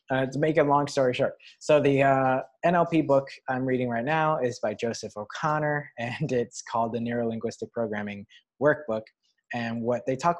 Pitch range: 115-145 Hz